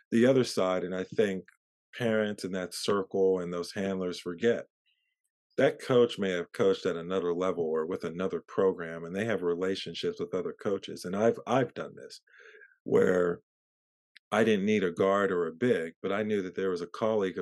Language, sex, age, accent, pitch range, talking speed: English, male, 40-59, American, 85-110 Hz, 190 wpm